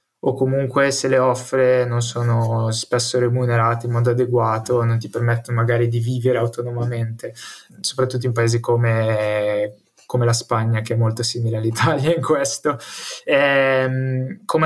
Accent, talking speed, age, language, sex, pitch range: native, 140 wpm, 20-39, Italian, male, 120-135 Hz